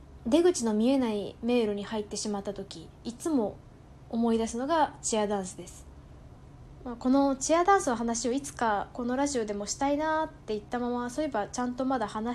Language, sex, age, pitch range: Japanese, female, 20-39, 210-285 Hz